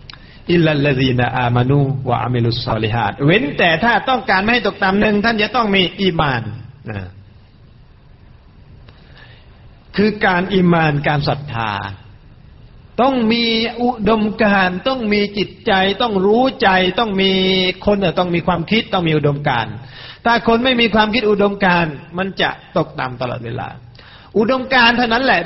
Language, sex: Thai, male